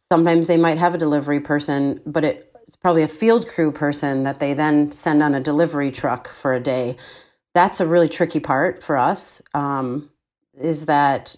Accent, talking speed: American, 185 wpm